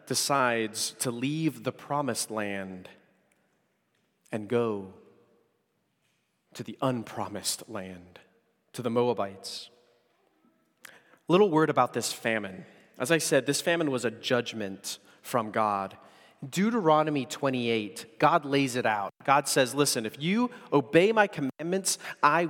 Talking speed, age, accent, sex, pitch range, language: 120 wpm, 30-49, American, male, 115-165 Hz, English